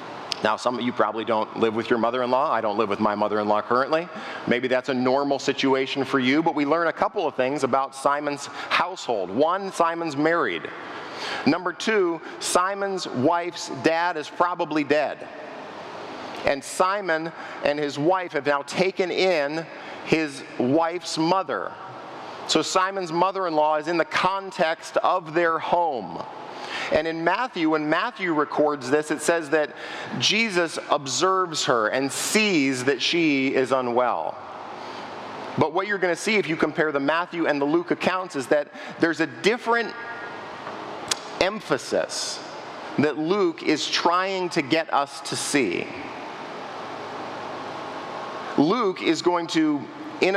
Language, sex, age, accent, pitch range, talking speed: English, male, 50-69, American, 140-185 Hz, 145 wpm